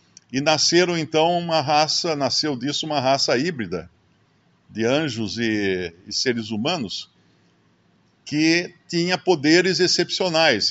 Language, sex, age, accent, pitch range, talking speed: Portuguese, male, 50-69, Brazilian, 110-155 Hz, 110 wpm